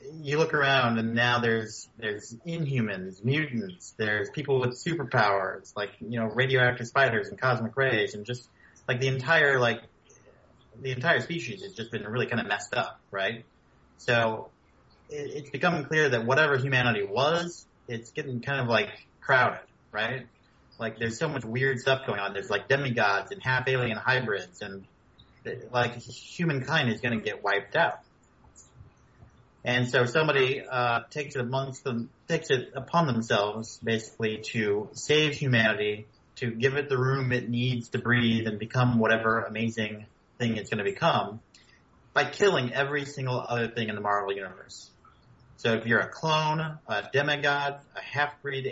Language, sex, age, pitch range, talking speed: English, male, 30-49, 110-140 Hz, 165 wpm